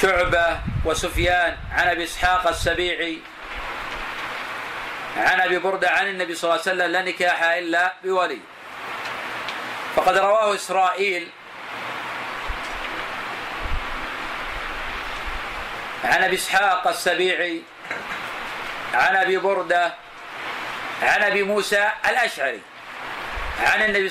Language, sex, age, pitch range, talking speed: Arabic, male, 40-59, 180-215 Hz, 85 wpm